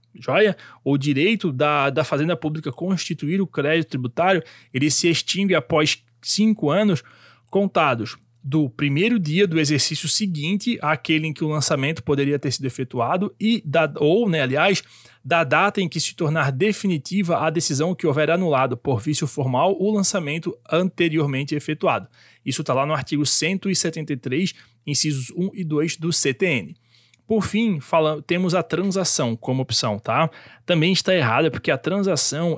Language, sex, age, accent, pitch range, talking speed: Portuguese, male, 20-39, Brazilian, 140-180 Hz, 155 wpm